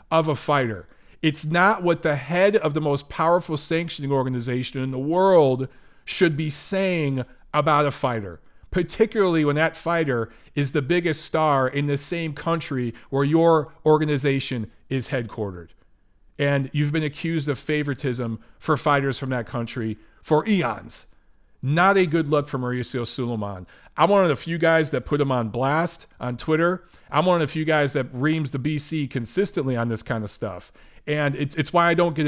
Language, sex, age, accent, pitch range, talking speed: English, male, 40-59, American, 125-160 Hz, 180 wpm